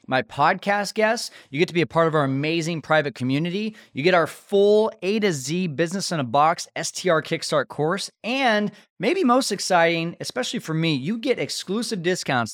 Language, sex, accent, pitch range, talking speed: English, male, American, 120-180 Hz, 185 wpm